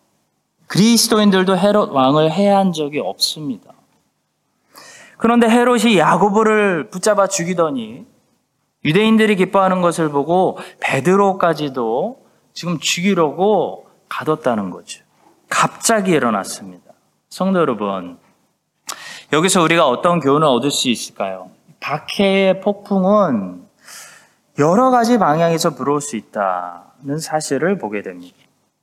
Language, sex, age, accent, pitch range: Korean, male, 20-39, native, 150-215 Hz